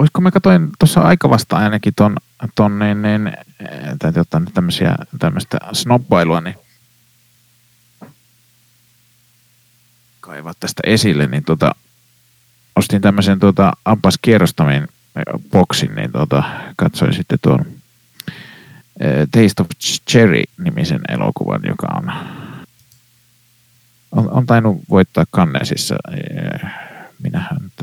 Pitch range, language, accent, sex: 120-165 Hz, Finnish, native, male